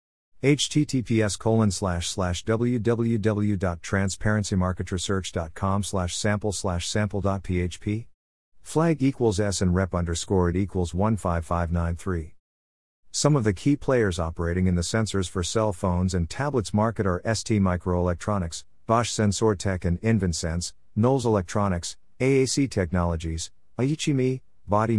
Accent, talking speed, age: American, 110 wpm, 50-69